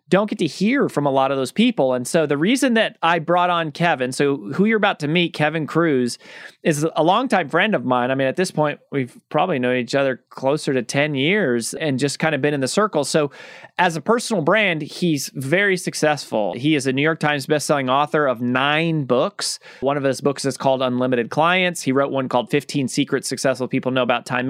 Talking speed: 230 wpm